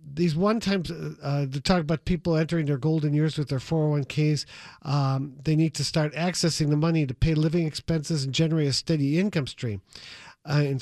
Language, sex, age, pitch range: English, male, 50-69, 130-160 Hz